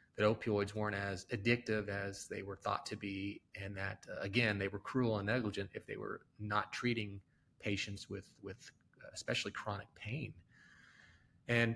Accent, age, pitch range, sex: American, 30-49, 105-120 Hz, male